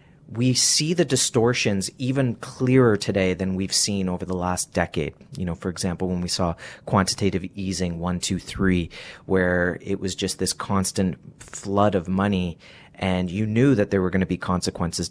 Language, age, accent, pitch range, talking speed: English, 30-49, American, 95-120 Hz, 180 wpm